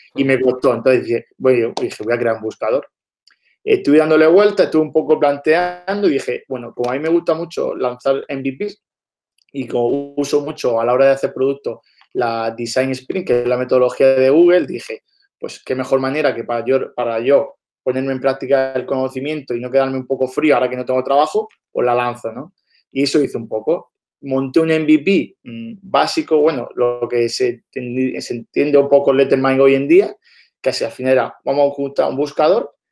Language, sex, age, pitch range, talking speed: Spanish, male, 20-39, 125-155 Hz, 200 wpm